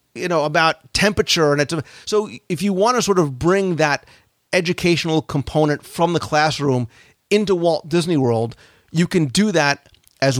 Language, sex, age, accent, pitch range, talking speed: English, male, 40-59, American, 135-175 Hz, 165 wpm